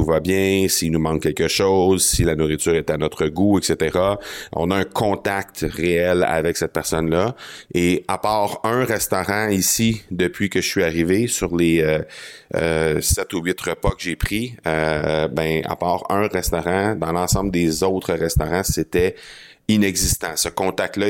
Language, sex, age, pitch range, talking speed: French, male, 30-49, 80-95 Hz, 170 wpm